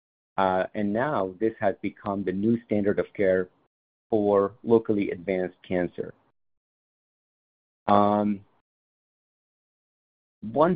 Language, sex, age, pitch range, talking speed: English, male, 50-69, 95-110 Hz, 95 wpm